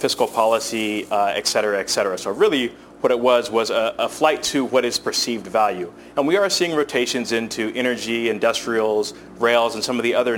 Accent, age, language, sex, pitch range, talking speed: American, 30-49, English, male, 115-150 Hz, 200 wpm